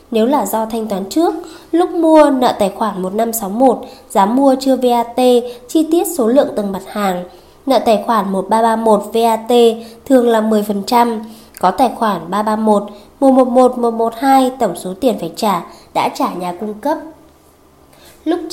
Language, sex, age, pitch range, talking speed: Vietnamese, female, 20-39, 205-280 Hz, 150 wpm